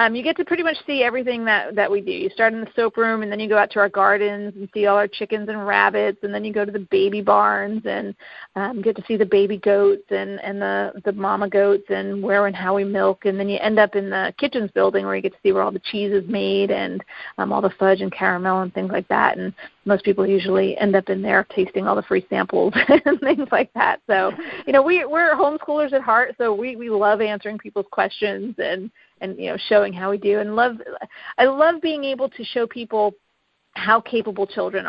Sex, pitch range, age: female, 195-230 Hz, 40-59